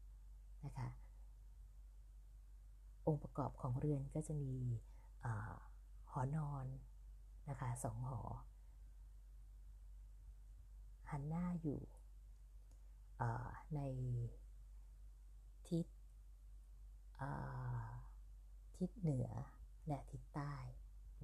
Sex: female